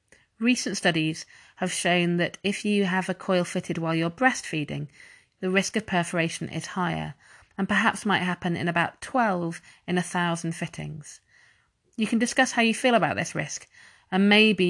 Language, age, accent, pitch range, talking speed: English, 30-49, British, 160-205 Hz, 165 wpm